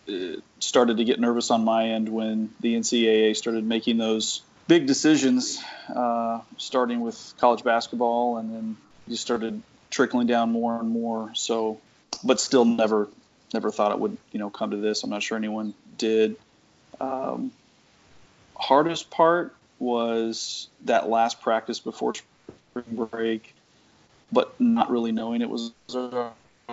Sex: male